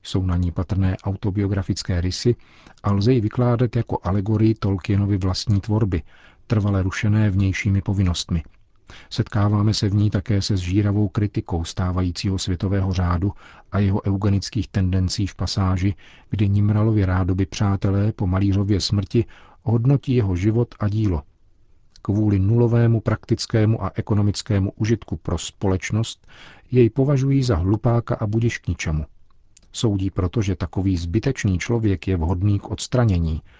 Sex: male